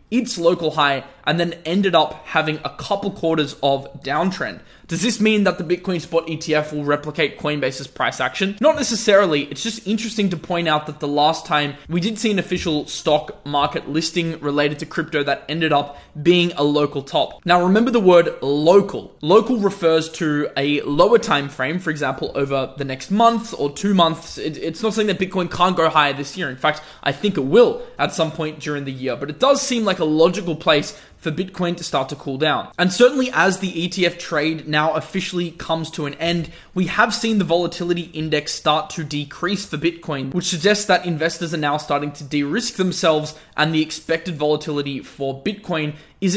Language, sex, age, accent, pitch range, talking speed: English, male, 20-39, Australian, 150-190 Hz, 200 wpm